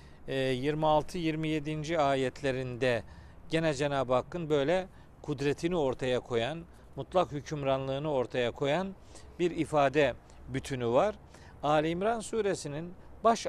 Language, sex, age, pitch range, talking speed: Turkish, male, 50-69, 125-170 Hz, 95 wpm